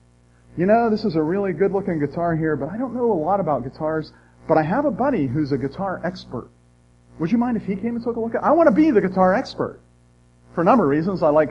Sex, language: male, English